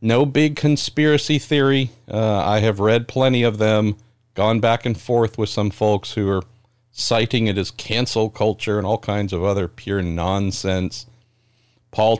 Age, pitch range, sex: 50-69, 95-115 Hz, male